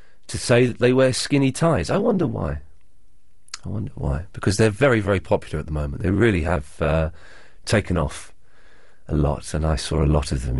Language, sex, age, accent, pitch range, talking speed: English, male, 40-59, British, 90-135 Hz, 205 wpm